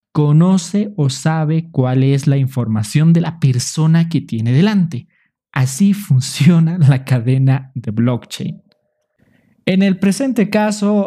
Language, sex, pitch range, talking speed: Spanish, male, 130-175 Hz, 125 wpm